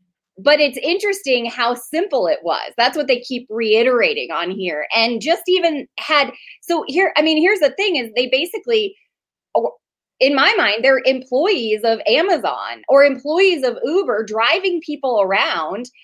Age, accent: 20-39, American